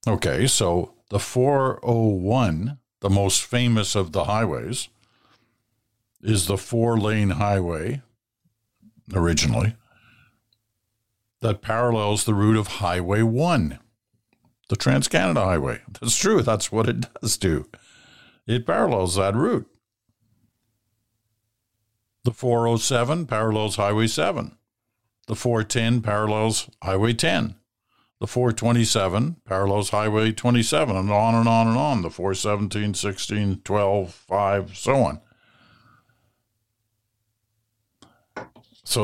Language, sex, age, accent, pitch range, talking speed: English, male, 50-69, American, 100-115 Hz, 100 wpm